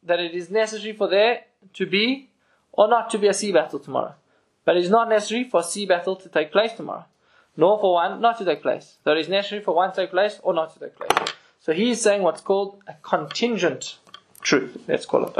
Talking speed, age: 240 wpm, 20-39